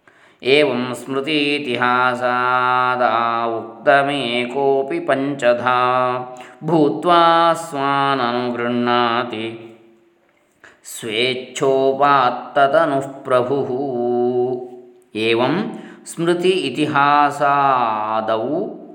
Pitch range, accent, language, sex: 120-150 Hz, native, Kannada, male